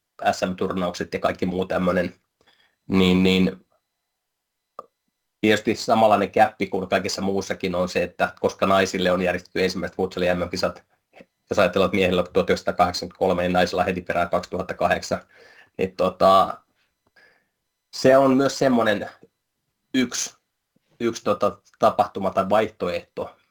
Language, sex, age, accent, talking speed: Finnish, male, 30-49, native, 115 wpm